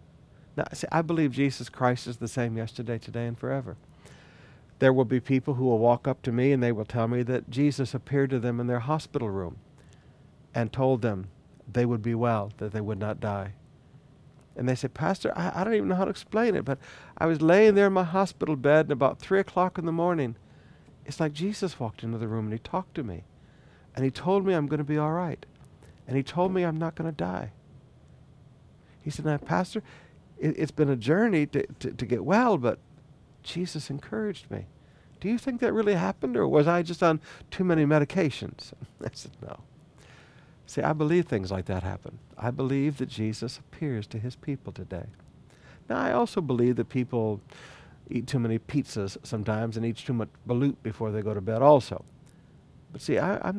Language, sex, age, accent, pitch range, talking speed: English, male, 50-69, American, 115-155 Hz, 205 wpm